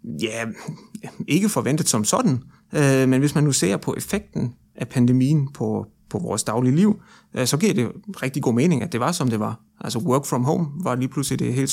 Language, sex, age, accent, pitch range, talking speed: Danish, male, 30-49, native, 115-145 Hz, 200 wpm